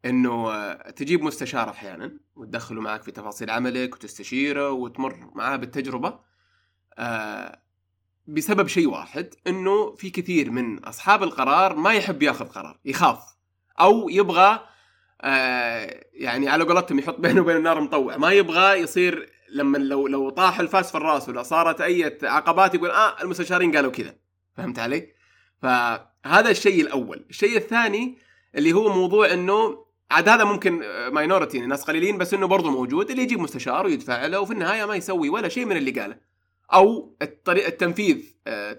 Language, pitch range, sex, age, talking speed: Arabic, 130-195 Hz, male, 20-39, 145 wpm